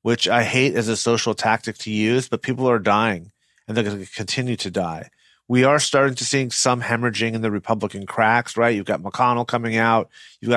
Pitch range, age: 110-130 Hz, 30-49